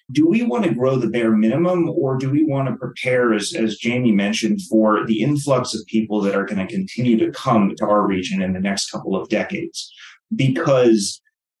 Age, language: 30-49, English